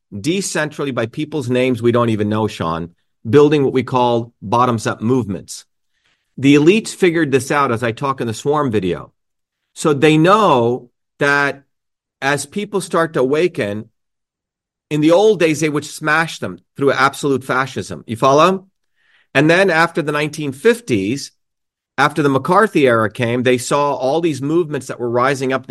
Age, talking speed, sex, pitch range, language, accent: 40-59, 165 wpm, male, 120-155 Hz, English, American